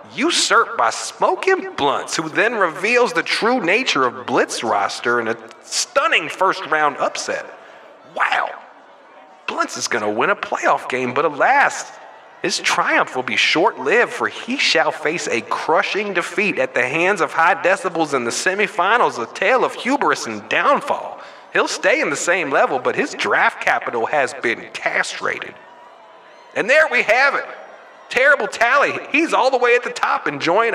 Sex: male